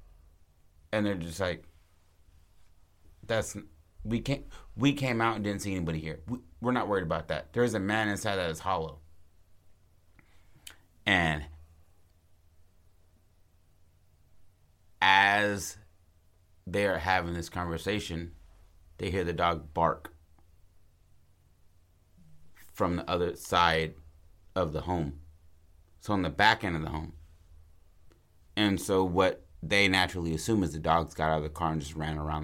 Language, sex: English, male